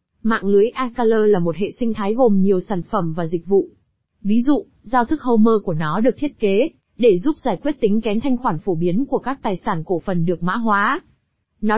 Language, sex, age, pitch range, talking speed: Vietnamese, female, 20-39, 200-245 Hz, 230 wpm